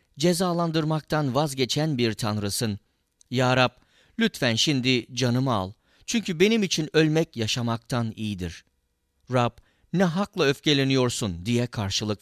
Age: 50-69